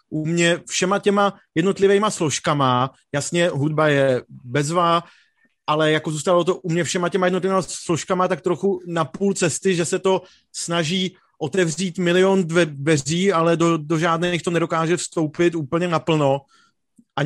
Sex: male